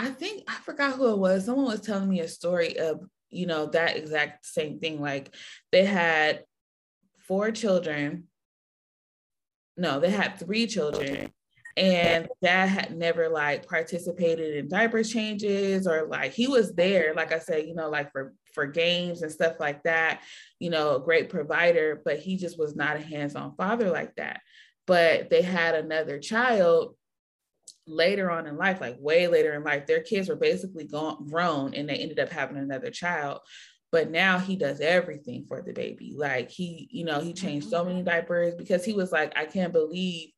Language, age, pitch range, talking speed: English, 20-39, 155-200 Hz, 185 wpm